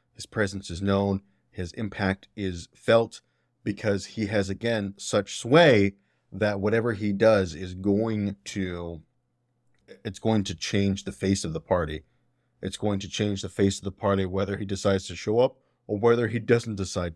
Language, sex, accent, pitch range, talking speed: English, male, American, 95-105 Hz, 175 wpm